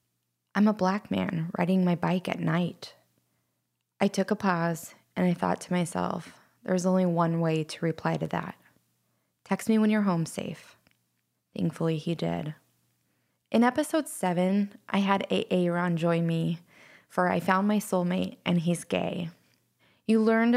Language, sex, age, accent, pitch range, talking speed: English, female, 20-39, American, 160-200 Hz, 160 wpm